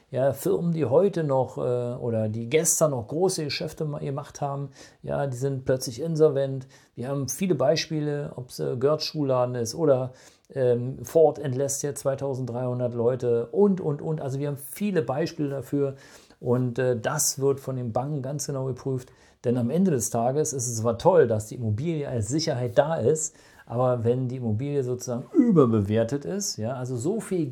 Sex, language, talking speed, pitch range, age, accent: male, German, 180 wpm, 125-155 Hz, 50-69, German